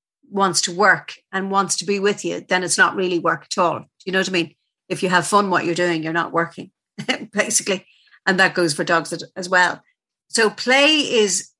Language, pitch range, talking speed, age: English, 175-215 Hz, 215 wpm, 50-69